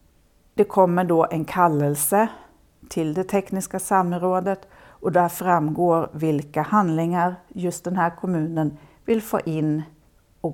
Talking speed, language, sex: 125 wpm, Swedish, female